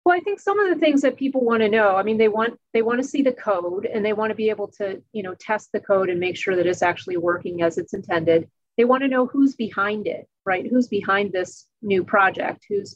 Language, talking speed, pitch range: English, 270 wpm, 180-215 Hz